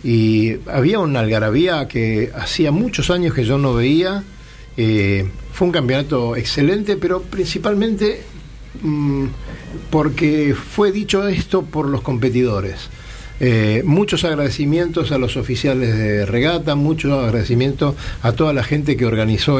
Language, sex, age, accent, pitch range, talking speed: Spanish, male, 50-69, Argentinian, 120-155 Hz, 130 wpm